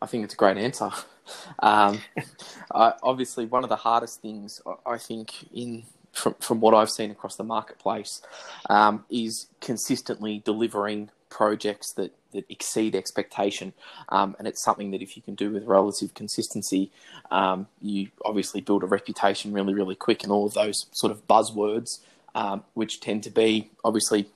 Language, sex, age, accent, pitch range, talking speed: English, male, 20-39, Australian, 105-115 Hz, 170 wpm